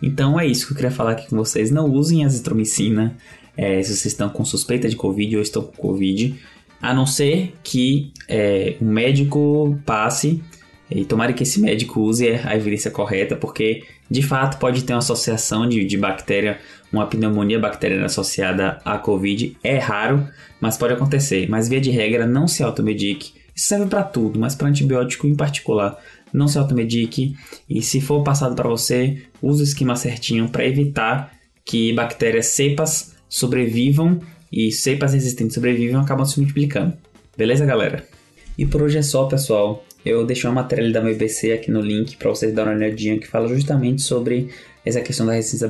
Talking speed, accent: 175 wpm, Brazilian